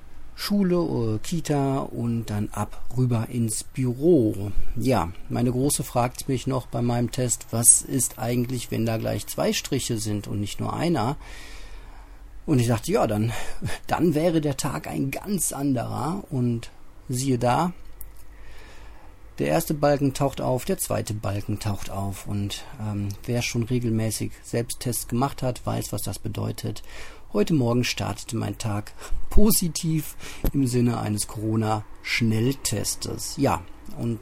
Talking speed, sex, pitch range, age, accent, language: 140 wpm, male, 105-130 Hz, 40-59, German, German